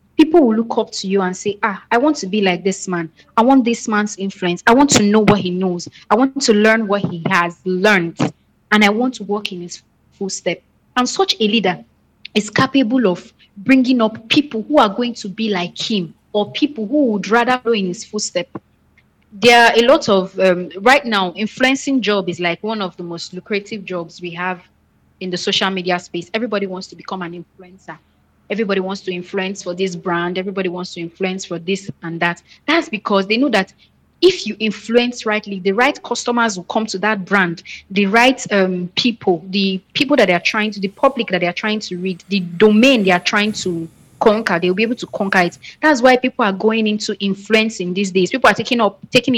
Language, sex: English, female